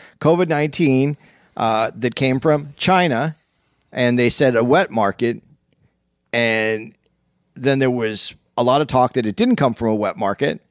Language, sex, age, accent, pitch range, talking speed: English, male, 40-59, American, 105-150 Hz, 155 wpm